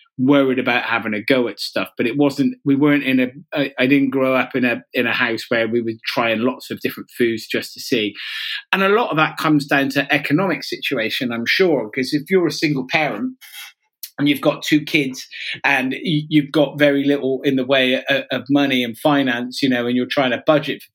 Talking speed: 240 wpm